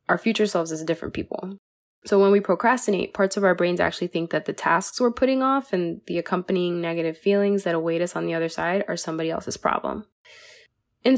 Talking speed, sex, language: 210 wpm, female, English